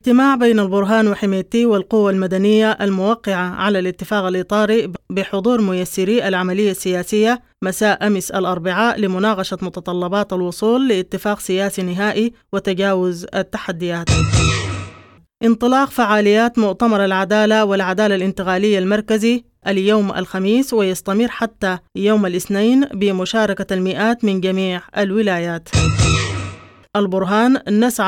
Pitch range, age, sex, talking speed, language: 190-220 Hz, 20-39, female, 95 wpm, English